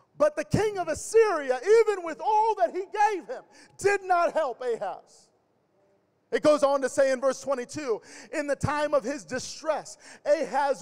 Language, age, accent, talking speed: English, 40-59, American, 170 wpm